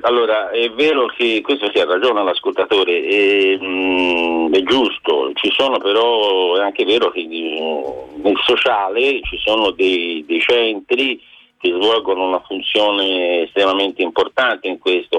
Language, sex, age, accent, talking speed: Italian, male, 50-69, native, 140 wpm